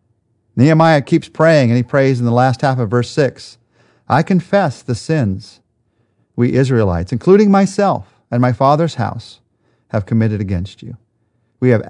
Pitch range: 110-160 Hz